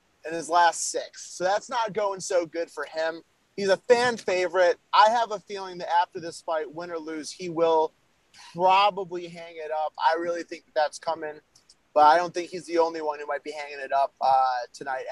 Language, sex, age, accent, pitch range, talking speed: English, male, 30-49, American, 165-220 Hz, 220 wpm